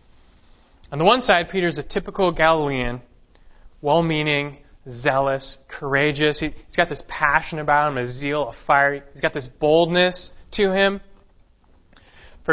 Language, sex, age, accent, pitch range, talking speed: English, male, 20-39, American, 130-185 Hz, 140 wpm